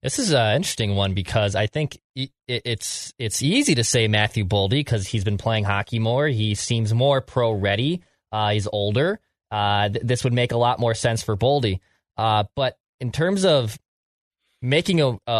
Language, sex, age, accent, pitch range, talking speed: English, male, 20-39, American, 110-135 Hz, 180 wpm